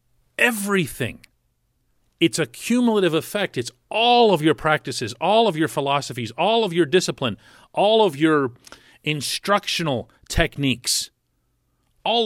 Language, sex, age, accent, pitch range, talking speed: English, male, 40-59, American, 145-225 Hz, 115 wpm